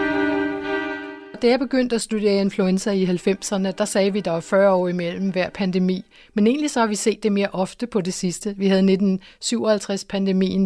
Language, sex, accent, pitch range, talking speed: Danish, female, native, 185-210 Hz, 190 wpm